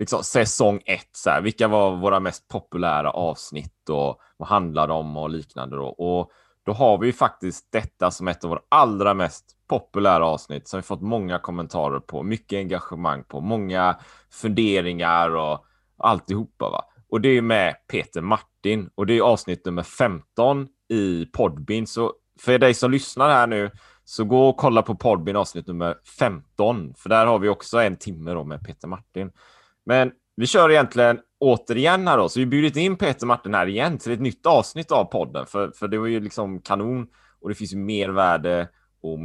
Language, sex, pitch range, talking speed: Swedish, male, 90-125 Hz, 190 wpm